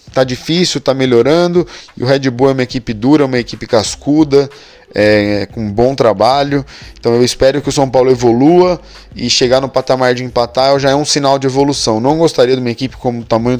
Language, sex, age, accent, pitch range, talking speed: Portuguese, male, 20-39, Brazilian, 120-140 Hz, 205 wpm